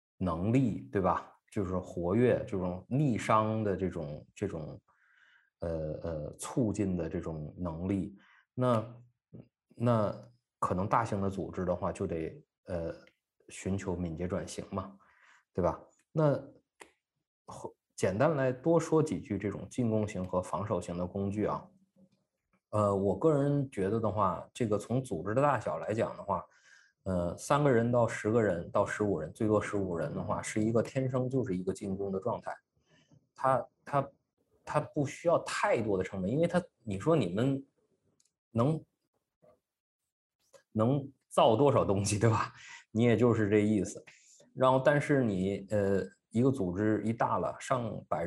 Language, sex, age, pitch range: Chinese, male, 20-39, 95-125 Hz